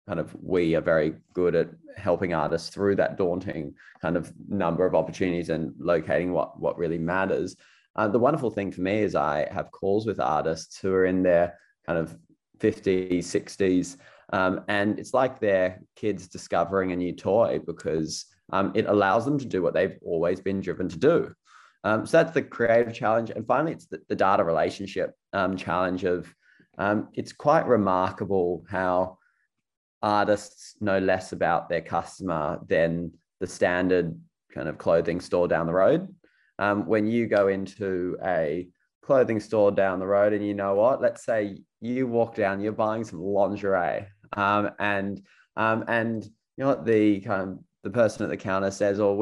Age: 20-39